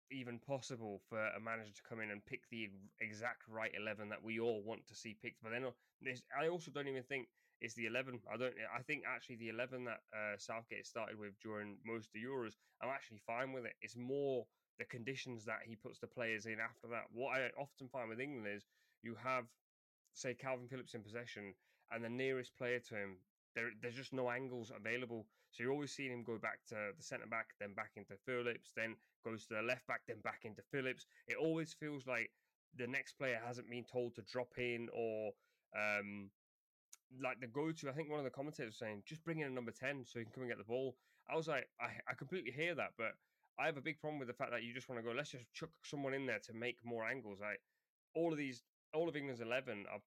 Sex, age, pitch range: male, 20-39, 110-130 Hz